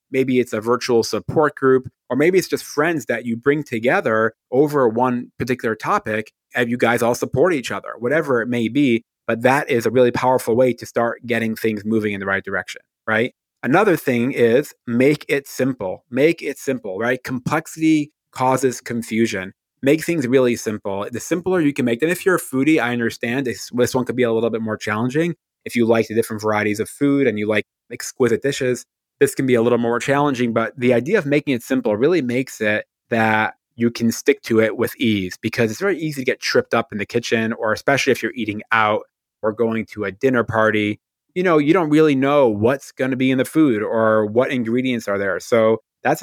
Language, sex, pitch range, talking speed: English, male, 110-135 Hz, 215 wpm